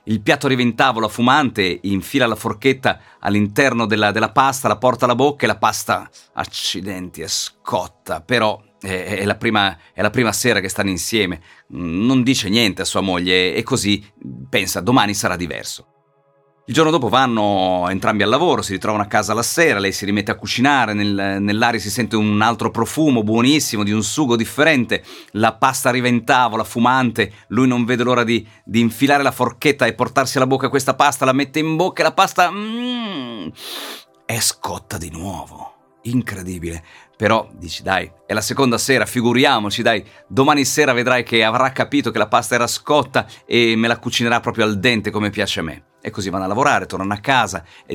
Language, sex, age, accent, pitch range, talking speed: Italian, male, 40-59, native, 100-130 Hz, 190 wpm